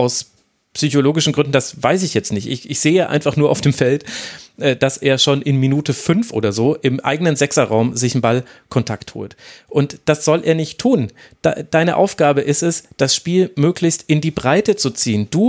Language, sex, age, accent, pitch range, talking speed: German, male, 30-49, German, 125-160 Hz, 200 wpm